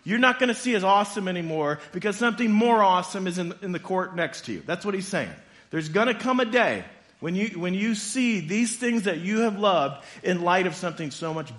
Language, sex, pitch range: English, male, 120-175 Hz